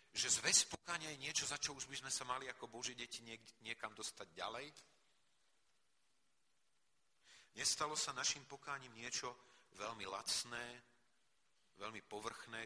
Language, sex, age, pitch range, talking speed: Slovak, male, 40-59, 110-135 Hz, 130 wpm